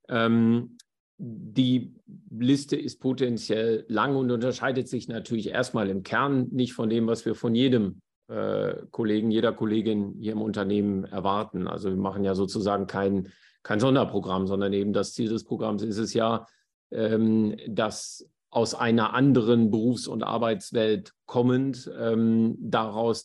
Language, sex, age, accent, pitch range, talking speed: German, male, 50-69, German, 105-120 Hz, 135 wpm